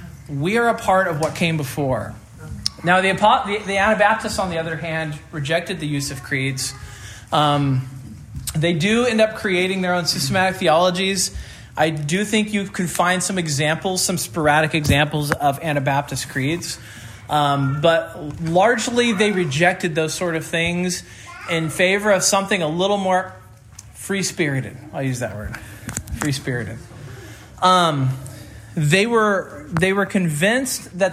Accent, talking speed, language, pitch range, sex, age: American, 145 wpm, English, 135-185 Hz, male, 20-39